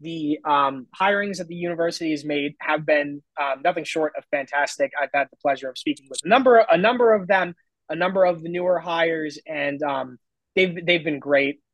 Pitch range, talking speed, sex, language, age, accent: 150-210 Hz, 205 wpm, male, English, 20-39, American